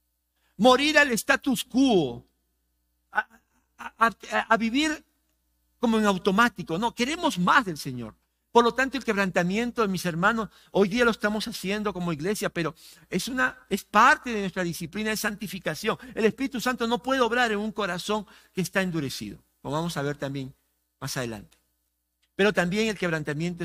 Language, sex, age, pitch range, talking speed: Spanish, male, 50-69, 130-220 Hz, 160 wpm